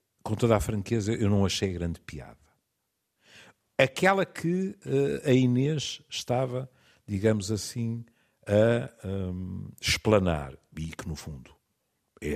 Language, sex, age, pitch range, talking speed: Portuguese, male, 50-69, 100-150 Hz, 120 wpm